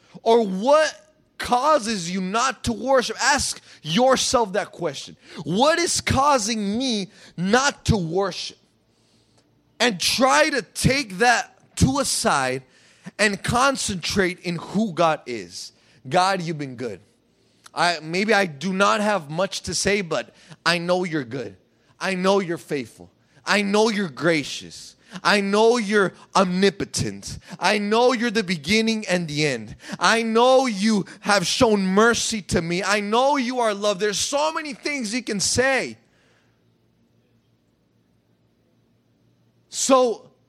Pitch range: 170-235 Hz